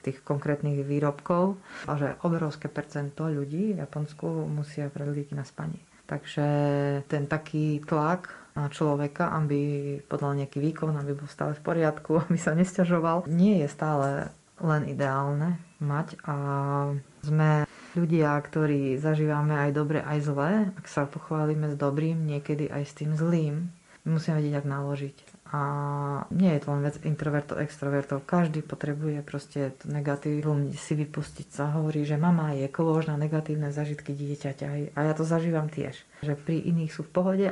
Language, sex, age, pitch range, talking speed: Slovak, female, 30-49, 145-160 Hz, 150 wpm